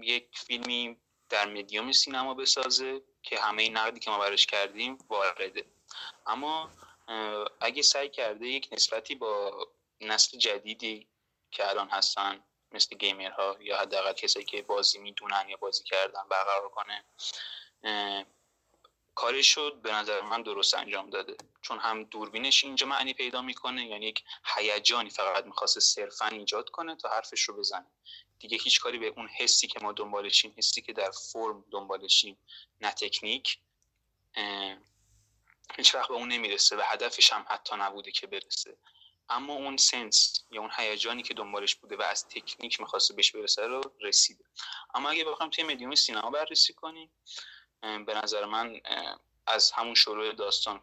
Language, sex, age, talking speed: Persian, male, 20-39, 150 wpm